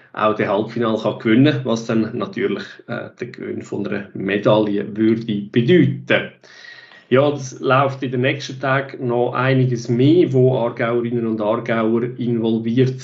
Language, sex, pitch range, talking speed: German, male, 110-135 Hz, 140 wpm